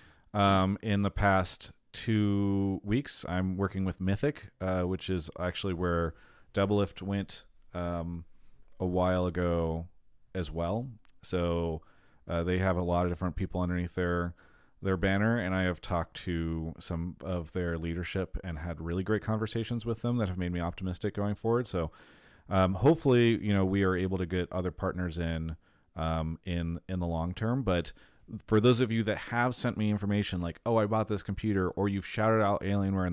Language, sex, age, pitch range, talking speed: English, male, 30-49, 85-100 Hz, 180 wpm